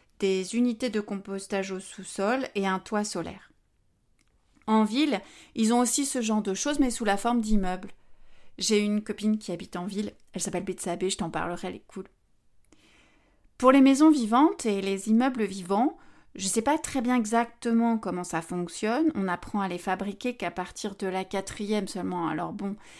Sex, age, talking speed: female, 30-49, 185 wpm